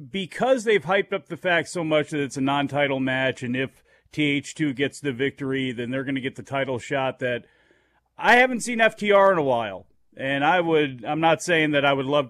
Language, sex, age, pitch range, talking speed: English, male, 40-59, 130-160 Hz, 220 wpm